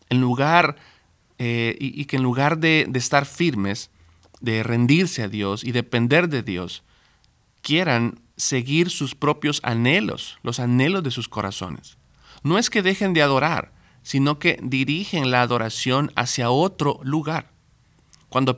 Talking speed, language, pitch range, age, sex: 140 wpm, Spanish, 120-155 Hz, 40-59, male